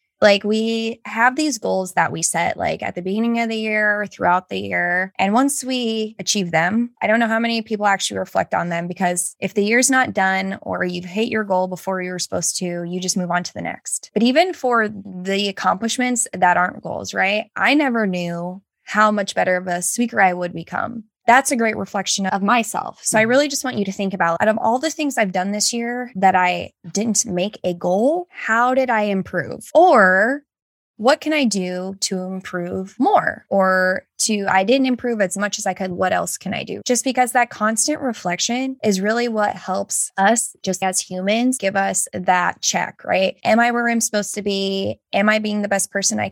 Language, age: English, 20-39